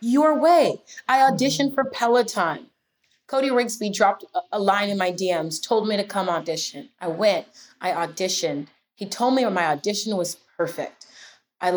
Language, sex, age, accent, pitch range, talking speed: English, female, 30-49, American, 180-245 Hz, 160 wpm